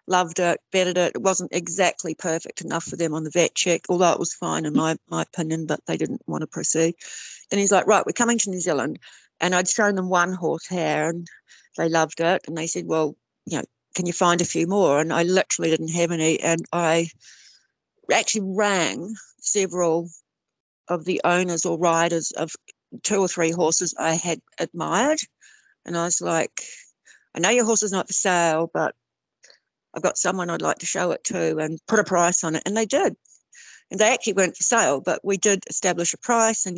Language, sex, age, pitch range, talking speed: English, female, 60-79, 165-190 Hz, 210 wpm